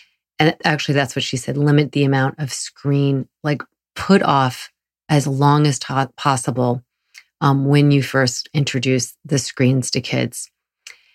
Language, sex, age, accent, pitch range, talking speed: English, female, 30-49, American, 130-150 Hz, 150 wpm